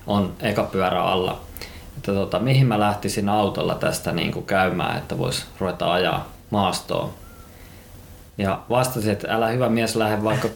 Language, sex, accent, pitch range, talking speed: Finnish, male, native, 90-105 Hz, 150 wpm